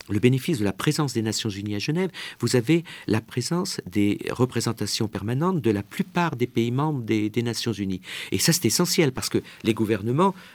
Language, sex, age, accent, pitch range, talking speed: French, male, 50-69, French, 110-155 Hz, 200 wpm